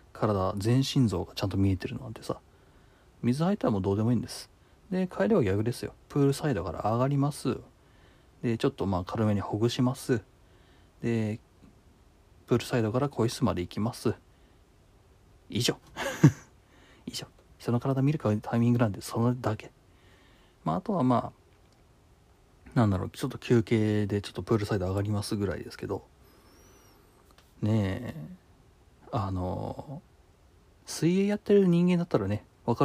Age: 40-59